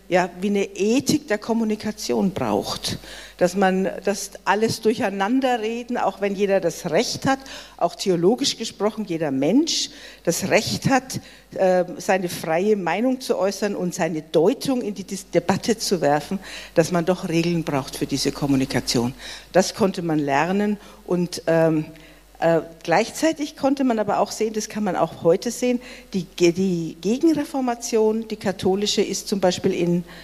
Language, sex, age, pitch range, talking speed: German, female, 50-69, 175-225 Hz, 145 wpm